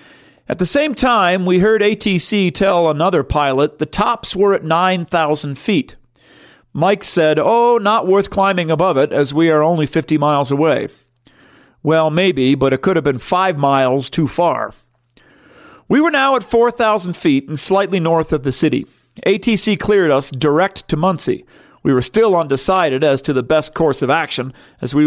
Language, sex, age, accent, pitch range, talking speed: English, male, 40-59, American, 140-195 Hz, 175 wpm